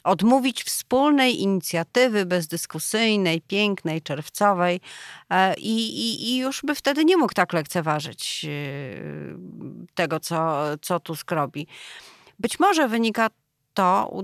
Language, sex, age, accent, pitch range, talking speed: Polish, female, 40-59, native, 165-225 Hz, 110 wpm